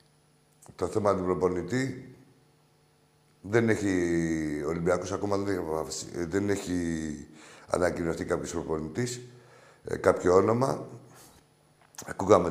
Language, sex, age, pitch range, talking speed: Greek, male, 60-79, 90-120 Hz, 70 wpm